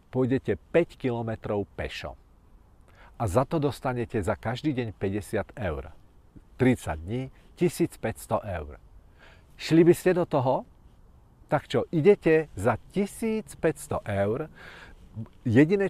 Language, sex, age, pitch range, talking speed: Czech, male, 40-59, 105-150 Hz, 110 wpm